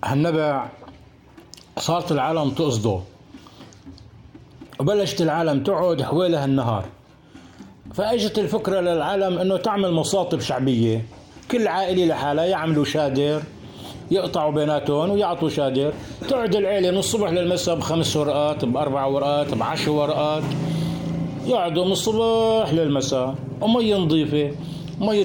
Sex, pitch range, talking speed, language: male, 145-195 Hz, 100 wpm, Arabic